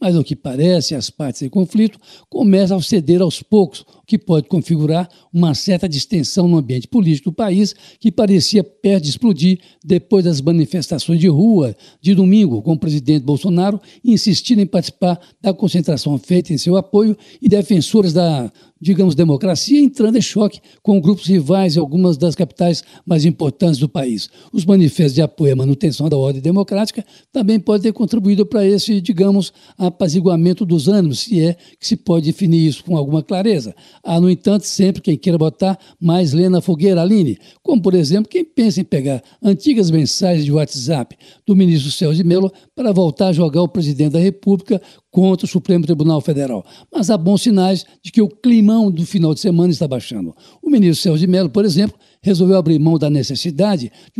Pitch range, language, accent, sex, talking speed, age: 165-200 Hz, Portuguese, Brazilian, male, 185 wpm, 60-79